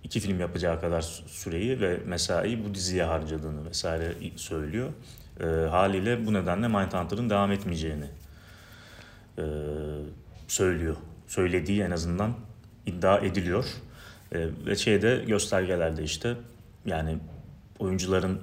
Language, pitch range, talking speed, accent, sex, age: Turkish, 85-110 Hz, 105 wpm, native, male, 30-49